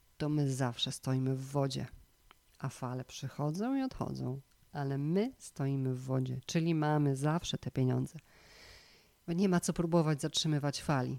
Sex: female